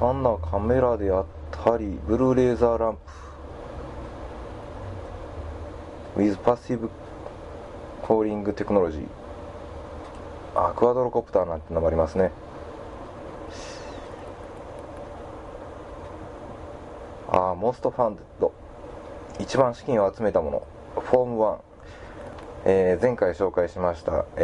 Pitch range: 80-115 Hz